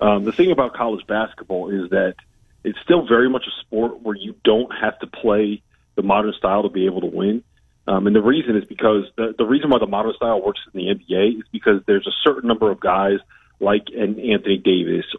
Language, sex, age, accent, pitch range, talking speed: English, male, 40-59, American, 100-120 Hz, 225 wpm